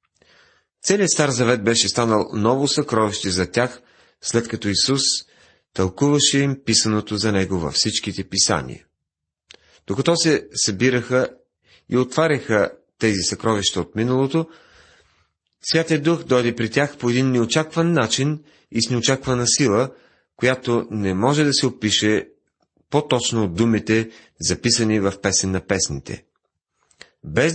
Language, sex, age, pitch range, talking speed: Bulgarian, male, 40-59, 100-135 Hz, 125 wpm